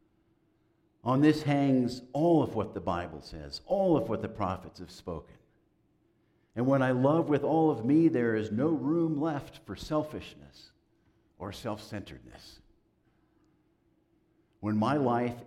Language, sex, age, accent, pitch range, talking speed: English, male, 60-79, American, 105-150 Hz, 140 wpm